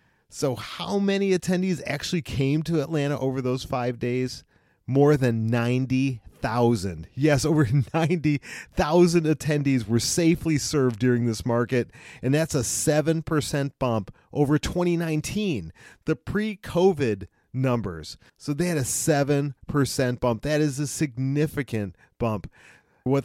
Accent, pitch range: American, 110-145 Hz